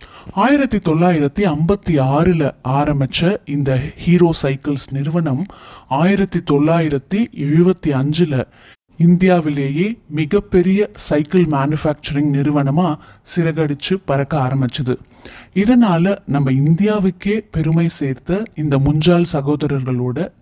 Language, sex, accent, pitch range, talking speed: Tamil, male, native, 140-185 Hz, 80 wpm